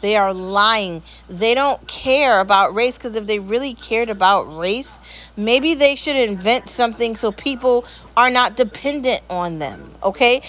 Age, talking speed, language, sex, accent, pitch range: 40-59, 160 wpm, English, female, American, 205-260 Hz